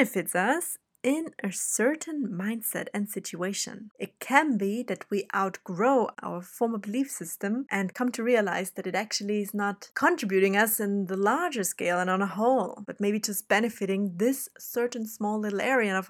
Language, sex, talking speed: English, female, 175 wpm